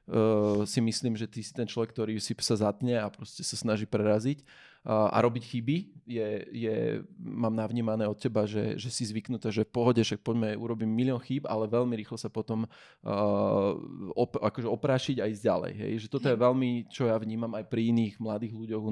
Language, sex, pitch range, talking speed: Slovak, male, 110-130 Hz, 205 wpm